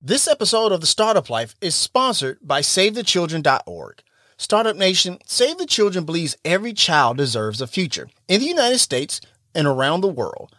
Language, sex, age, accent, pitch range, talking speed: English, male, 30-49, American, 140-195 Hz, 165 wpm